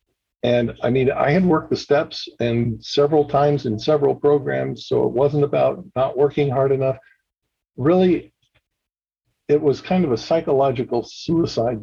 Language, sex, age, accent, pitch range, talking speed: English, male, 50-69, American, 115-145 Hz, 150 wpm